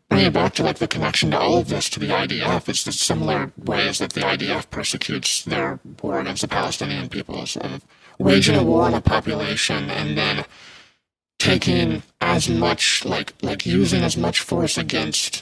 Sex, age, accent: male, 50-69, American